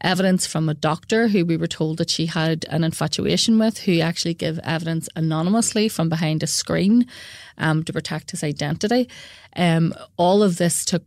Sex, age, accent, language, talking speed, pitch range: female, 30-49, Irish, English, 180 wpm, 160-180 Hz